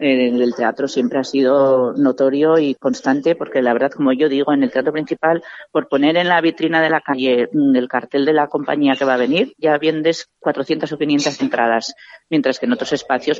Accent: Spanish